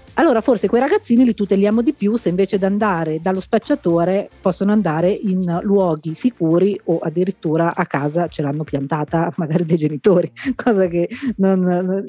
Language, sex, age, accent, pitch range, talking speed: Italian, female, 40-59, native, 170-215 Hz, 165 wpm